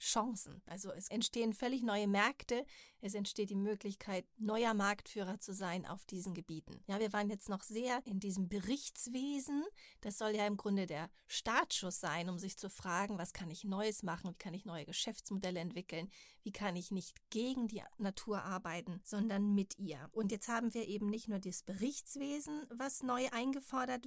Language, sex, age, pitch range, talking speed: German, female, 40-59, 190-230 Hz, 180 wpm